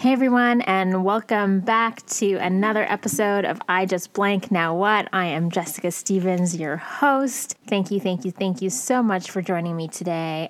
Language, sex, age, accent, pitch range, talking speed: English, female, 20-39, American, 170-210 Hz, 185 wpm